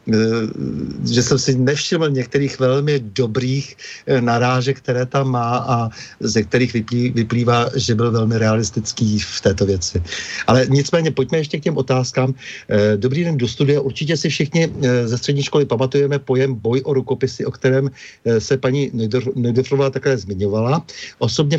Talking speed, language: 145 wpm, Czech